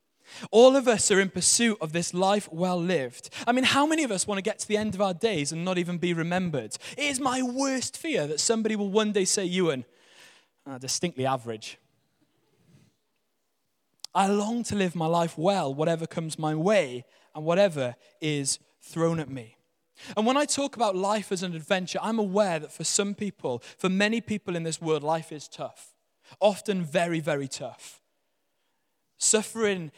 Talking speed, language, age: 180 wpm, English, 20-39